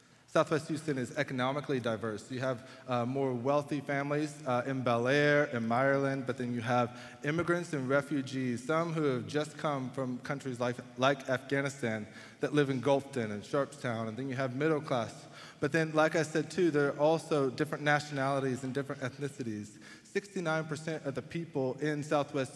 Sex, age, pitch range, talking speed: male, 20-39, 135-170 Hz, 175 wpm